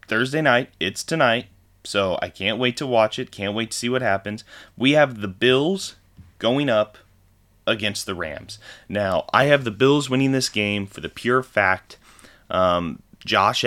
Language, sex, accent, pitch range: English, male, American, 95-115 Hz